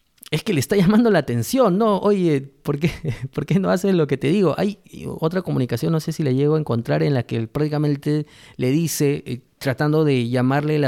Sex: male